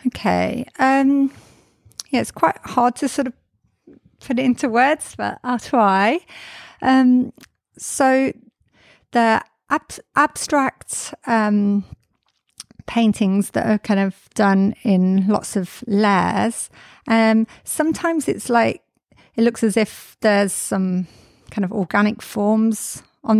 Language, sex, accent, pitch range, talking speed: English, female, British, 195-240 Hz, 115 wpm